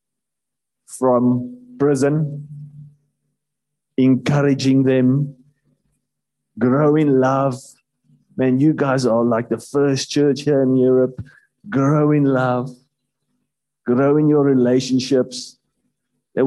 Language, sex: English, male